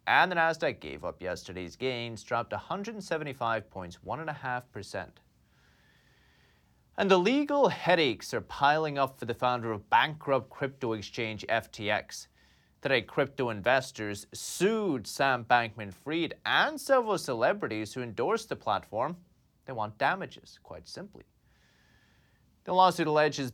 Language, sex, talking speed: English, male, 120 wpm